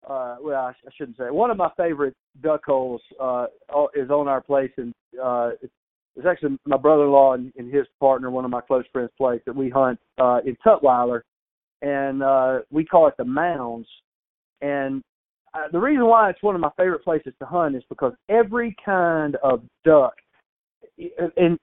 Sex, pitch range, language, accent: male, 135-190 Hz, English, American